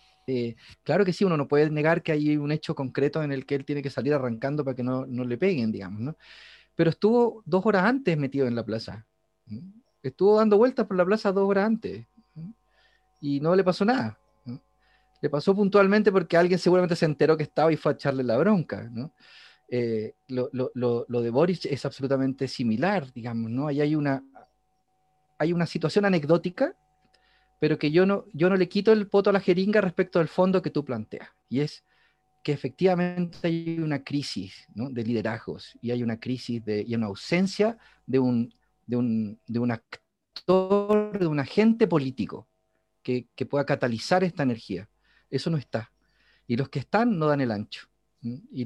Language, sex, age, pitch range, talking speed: Spanish, male, 30-49, 125-180 Hz, 190 wpm